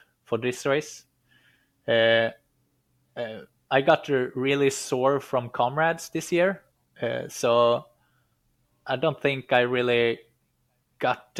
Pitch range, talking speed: 115-130 Hz, 110 wpm